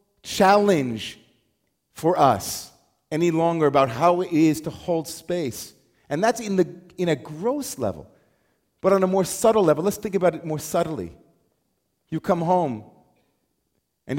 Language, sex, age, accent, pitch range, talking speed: English, male, 40-59, American, 135-170 Hz, 150 wpm